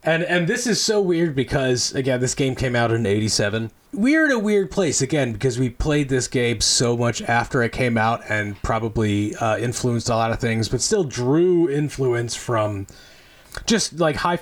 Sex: male